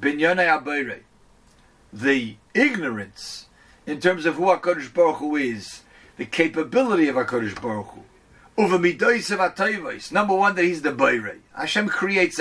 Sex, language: male, English